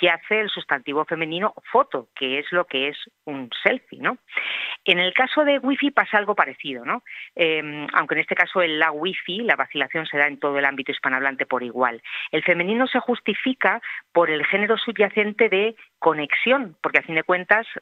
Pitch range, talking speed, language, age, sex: 150-205 Hz, 190 wpm, Spanish, 40-59, female